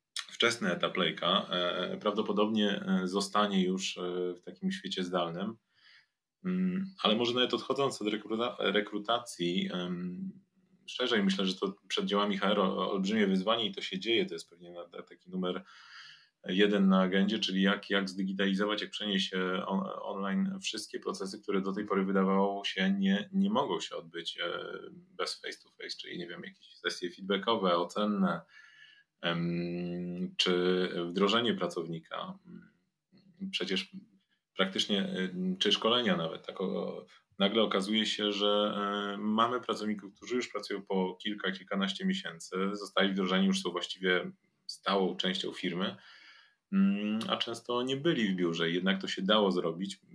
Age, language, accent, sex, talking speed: 30-49, Polish, native, male, 125 wpm